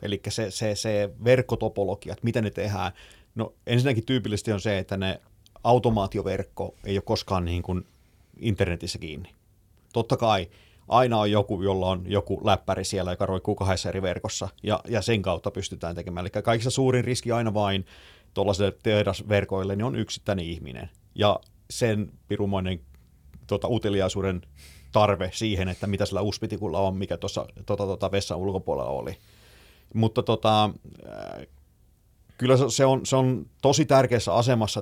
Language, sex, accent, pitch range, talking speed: Finnish, male, native, 95-115 Hz, 150 wpm